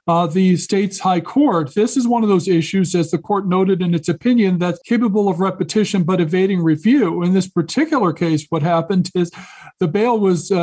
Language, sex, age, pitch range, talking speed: English, male, 50-69, 165-195 Hz, 200 wpm